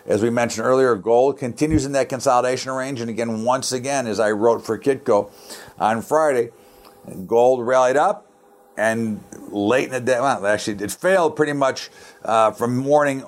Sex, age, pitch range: male, 50-69, 105-130 Hz